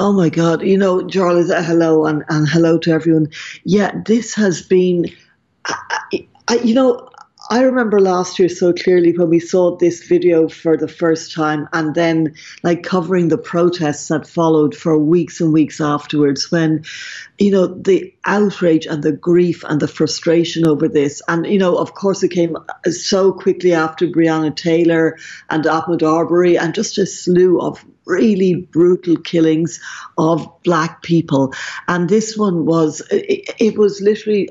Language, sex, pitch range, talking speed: English, female, 155-185 Hz, 165 wpm